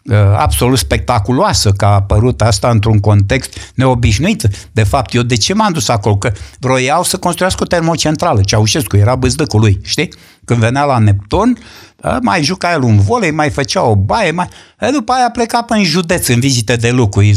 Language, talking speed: Romanian, 185 wpm